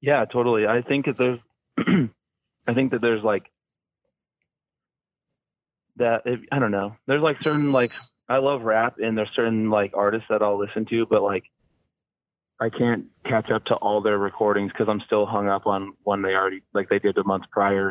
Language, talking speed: English, 190 wpm